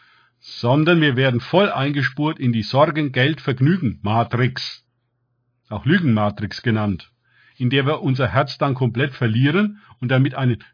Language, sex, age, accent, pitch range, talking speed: German, male, 50-69, German, 120-145 Hz, 125 wpm